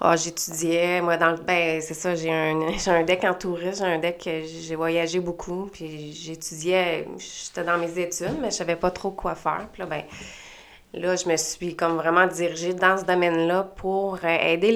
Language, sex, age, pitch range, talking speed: French, female, 30-49, 165-185 Hz, 195 wpm